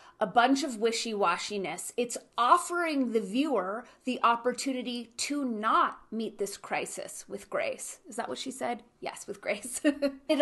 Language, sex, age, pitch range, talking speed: English, female, 30-49, 210-275 Hz, 150 wpm